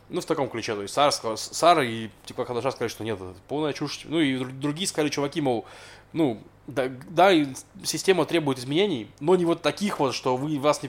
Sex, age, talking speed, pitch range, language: male, 20-39, 215 wpm, 120-145 Hz, Russian